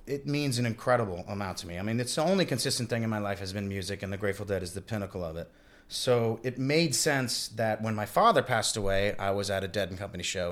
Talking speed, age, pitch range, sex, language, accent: 270 wpm, 30-49, 95-120 Hz, male, English, American